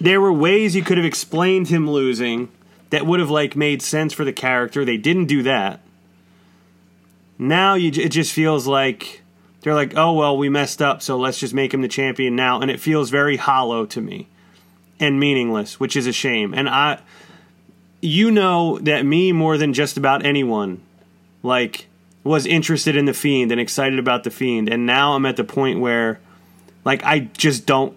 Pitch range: 125-150 Hz